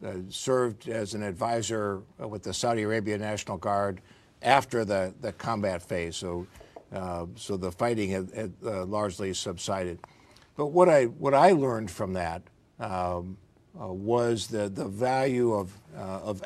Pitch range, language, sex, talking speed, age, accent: 95-120 Hz, English, male, 160 wpm, 60-79, American